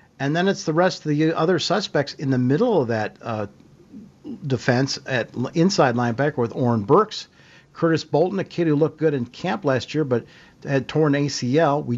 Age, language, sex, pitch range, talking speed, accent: 50-69, English, male, 130-155 Hz, 190 wpm, American